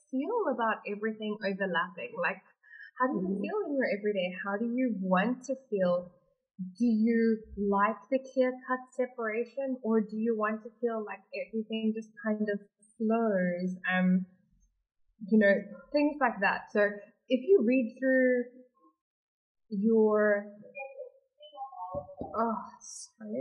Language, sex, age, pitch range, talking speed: English, female, 20-39, 205-265 Hz, 130 wpm